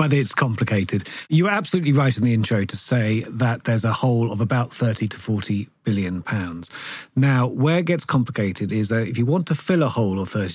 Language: English